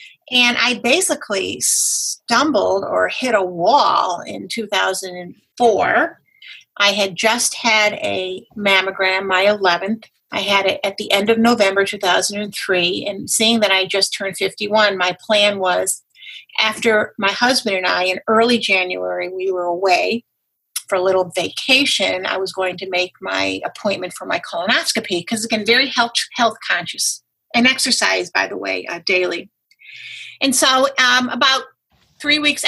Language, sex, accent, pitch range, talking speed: English, female, American, 190-235 Hz, 150 wpm